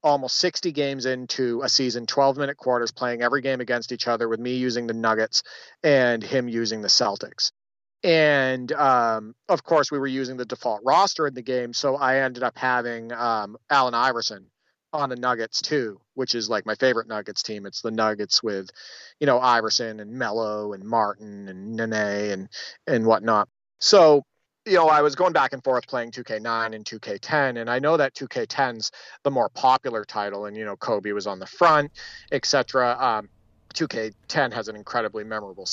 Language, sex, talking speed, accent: English, male, 185 wpm, American